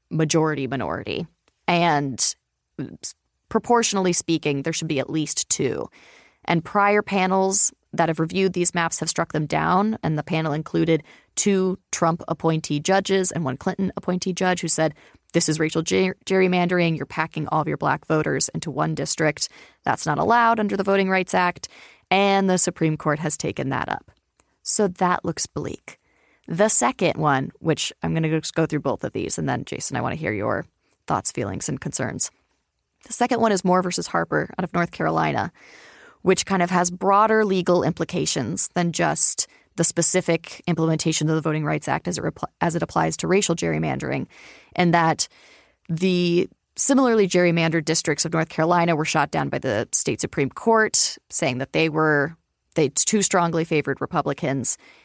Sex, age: female, 20-39